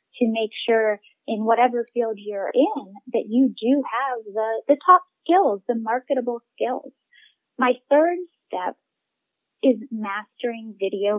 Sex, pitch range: female, 220-275 Hz